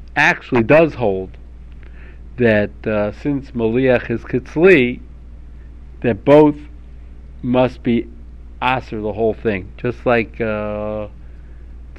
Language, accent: English, American